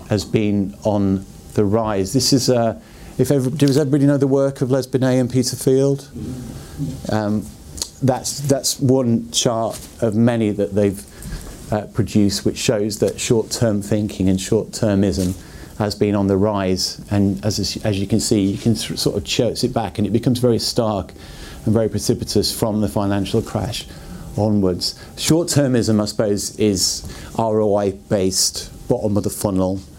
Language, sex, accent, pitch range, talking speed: English, male, British, 95-115 Hz, 160 wpm